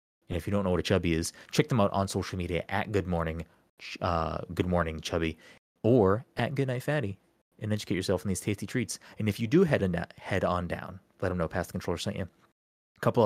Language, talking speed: English, 235 wpm